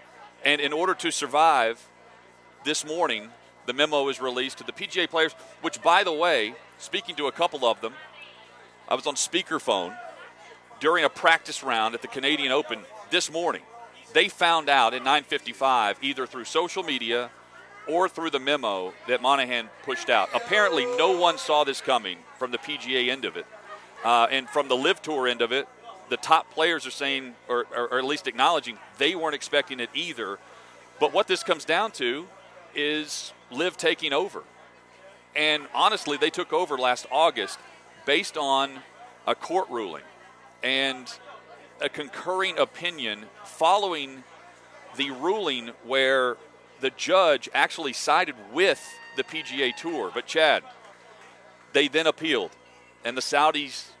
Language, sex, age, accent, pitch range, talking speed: English, male, 40-59, American, 125-165 Hz, 155 wpm